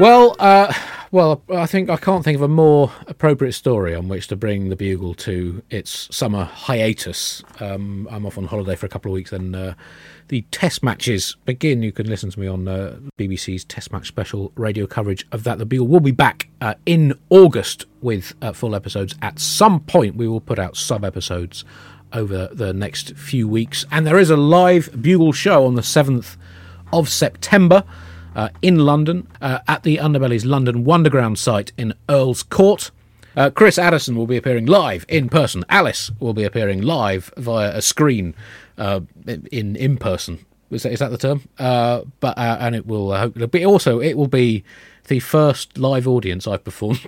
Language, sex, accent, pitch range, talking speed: English, male, British, 100-150 Hz, 185 wpm